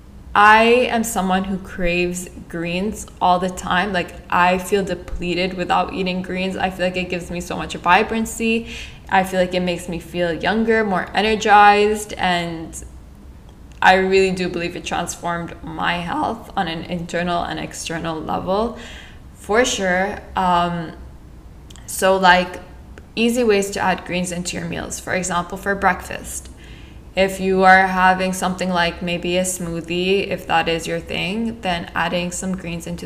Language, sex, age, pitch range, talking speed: English, female, 10-29, 175-190 Hz, 155 wpm